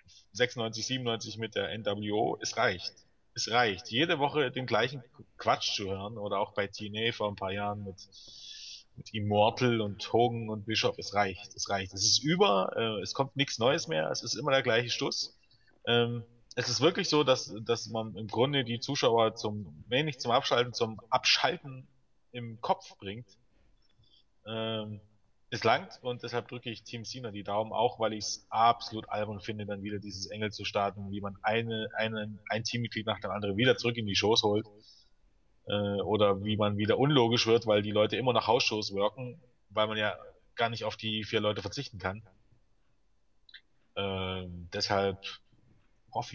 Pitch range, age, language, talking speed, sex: 100-120 Hz, 30-49, German, 180 wpm, male